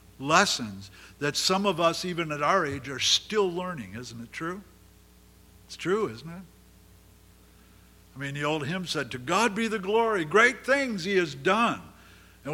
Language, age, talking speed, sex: English, 60-79, 170 wpm, male